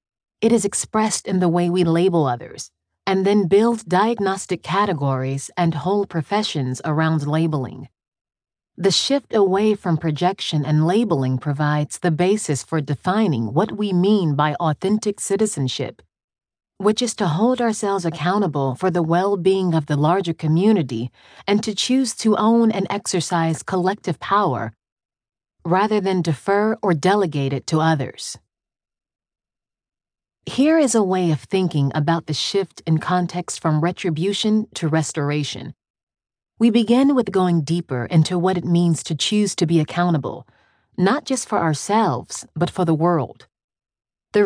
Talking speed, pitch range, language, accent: 145 wpm, 155-205 Hz, English, American